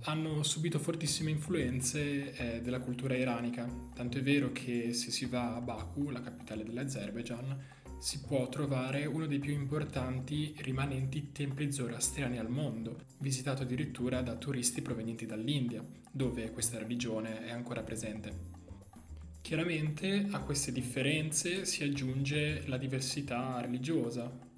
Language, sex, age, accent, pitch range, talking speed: Italian, male, 20-39, native, 120-140 Hz, 125 wpm